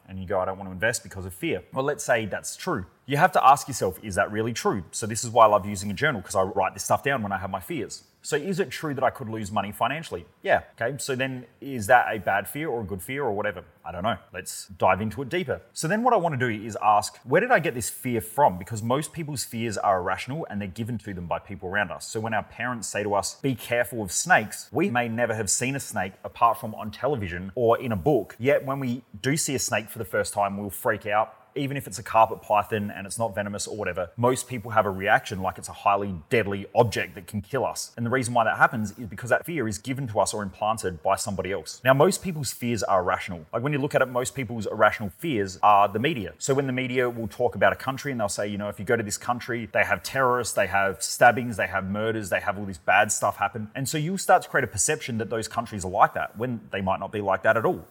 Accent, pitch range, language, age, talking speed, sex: Australian, 100-125 Hz, English, 30-49, 280 wpm, male